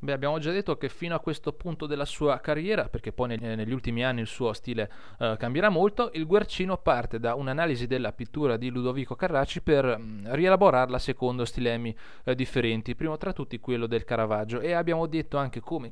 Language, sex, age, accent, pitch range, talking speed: Italian, male, 30-49, native, 110-140 Hz, 190 wpm